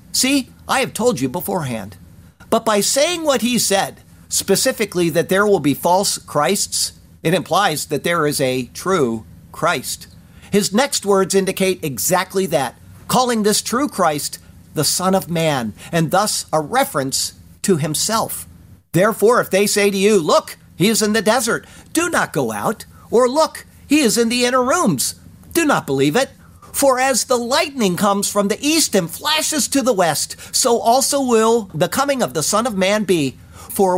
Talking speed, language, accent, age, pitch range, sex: 175 wpm, English, American, 50-69, 145-235 Hz, male